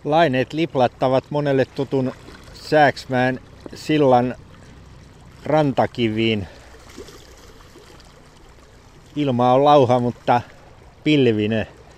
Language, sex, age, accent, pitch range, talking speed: Finnish, male, 60-79, native, 105-130 Hz, 60 wpm